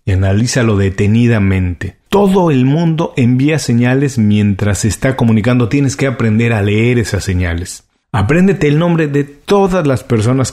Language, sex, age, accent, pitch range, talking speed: Spanish, male, 40-59, Mexican, 100-135 Hz, 150 wpm